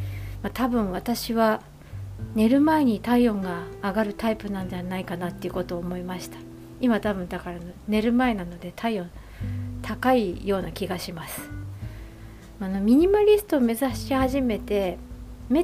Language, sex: Japanese, female